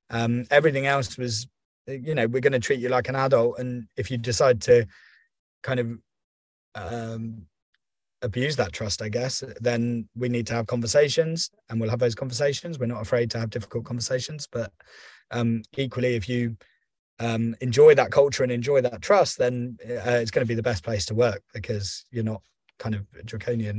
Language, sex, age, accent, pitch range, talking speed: English, male, 20-39, British, 115-130 Hz, 190 wpm